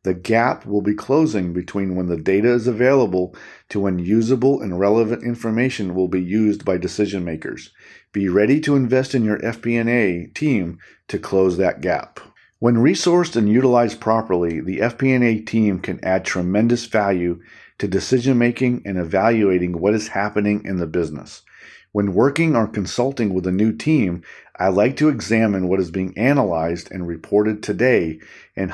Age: 50-69